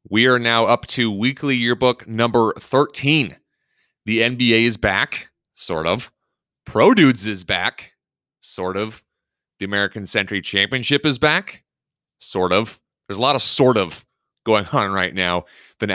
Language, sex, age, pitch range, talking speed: English, male, 30-49, 95-120 Hz, 150 wpm